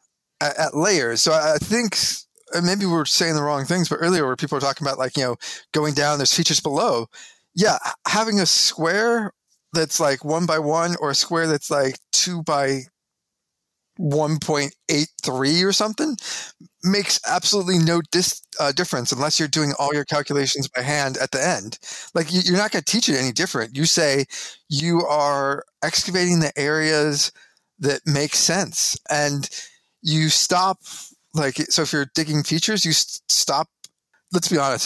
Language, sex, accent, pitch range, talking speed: English, male, American, 140-180 Hz, 165 wpm